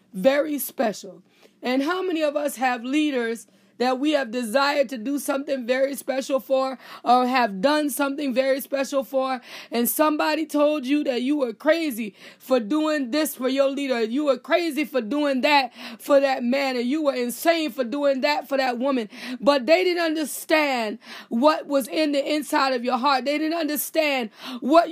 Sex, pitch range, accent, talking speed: female, 265-315 Hz, American, 180 wpm